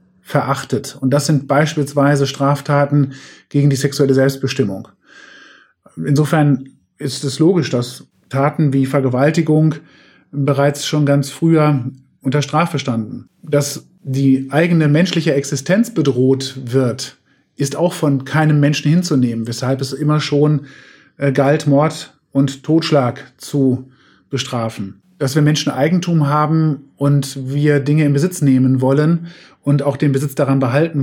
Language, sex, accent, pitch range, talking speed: German, male, German, 135-160 Hz, 130 wpm